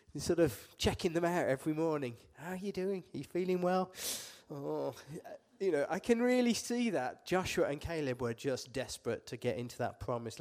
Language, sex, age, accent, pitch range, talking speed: Danish, male, 30-49, British, 125-185 Hz, 195 wpm